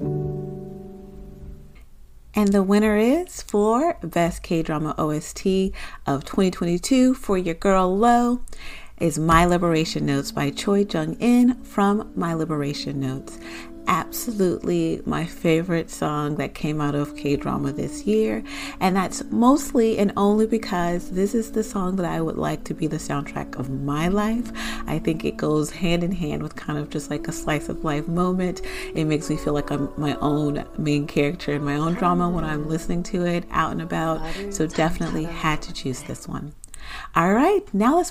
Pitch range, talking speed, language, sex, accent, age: 150-200 Hz, 170 wpm, English, female, American, 40-59